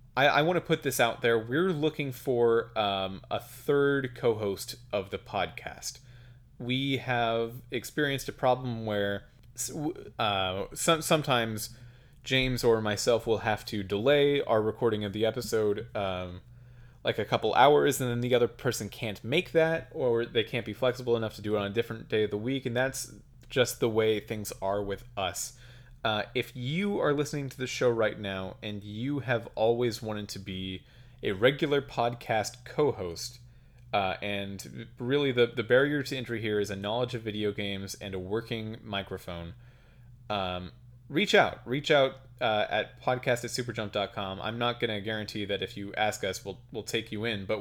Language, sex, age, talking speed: English, male, 30-49, 175 wpm